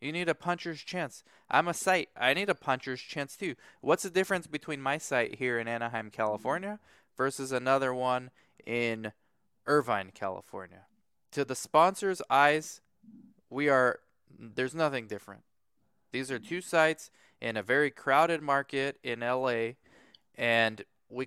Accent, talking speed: American, 145 wpm